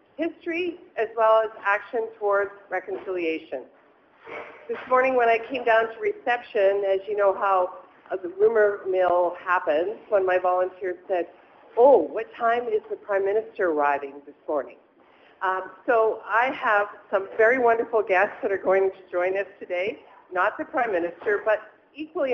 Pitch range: 200-255 Hz